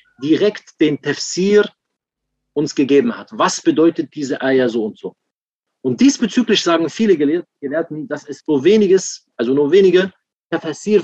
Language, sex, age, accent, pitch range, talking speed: German, male, 40-59, German, 140-185 Hz, 140 wpm